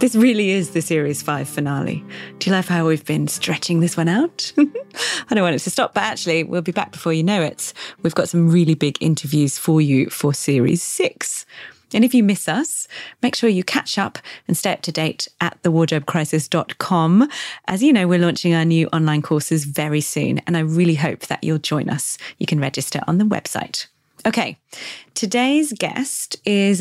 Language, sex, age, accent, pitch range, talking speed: English, female, 30-49, British, 155-205 Hz, 200 wpm